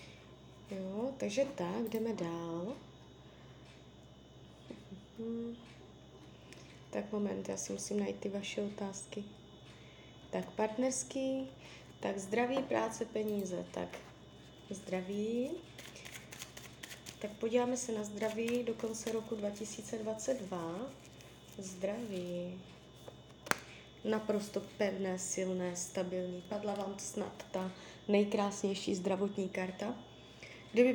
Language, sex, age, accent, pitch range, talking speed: Czech, female, 20-39, native, 185-225 Hz, 85 wpm